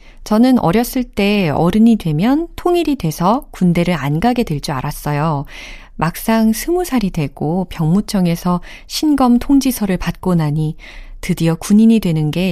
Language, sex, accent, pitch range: Korean, female, native, 155-210 Hz